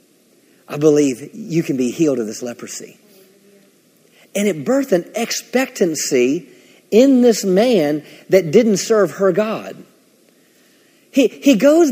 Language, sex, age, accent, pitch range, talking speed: English, male, 40-59, American, 180-240 Hz, 125 wpm